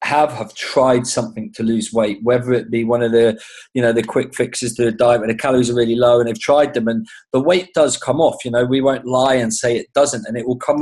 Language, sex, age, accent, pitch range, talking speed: English, male, 20-39, British, 120-140 Hz, 275 wpm